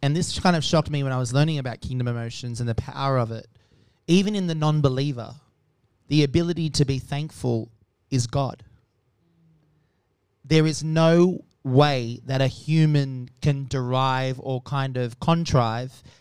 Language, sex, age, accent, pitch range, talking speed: English, male, 30-49, Australian, 125-155 Hz, 155 wpm